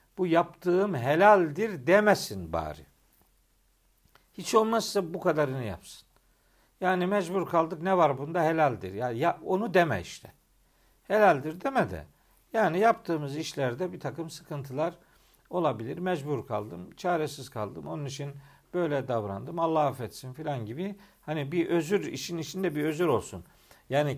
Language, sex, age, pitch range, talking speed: Turkish, male, 60-79, 130-170 Hz, 130 wpm